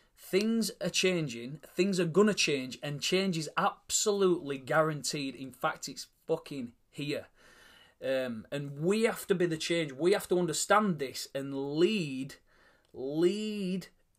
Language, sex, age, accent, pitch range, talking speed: English, male, 30-49, British, 145-185 Hz, 145 wpm